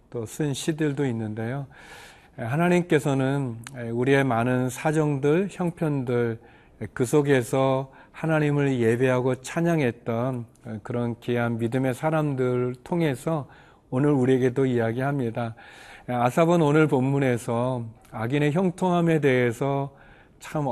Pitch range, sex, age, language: 120-150 Hz, male, 40-59, Korean